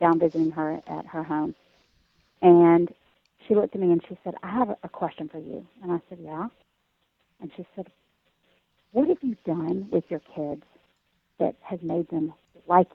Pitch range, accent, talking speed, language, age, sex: 165-210 Hz, American, 180 wpm, English, 50-69, female